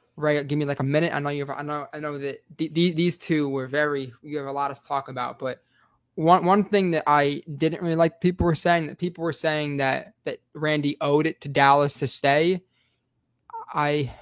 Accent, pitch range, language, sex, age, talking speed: American, 135-160 Hz, English, male, 20-39, 225 wpm